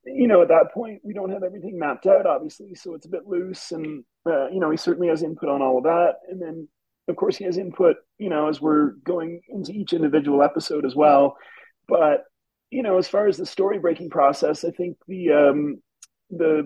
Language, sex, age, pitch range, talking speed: English, male, 40-59, 155-205 Hz, 225 wpm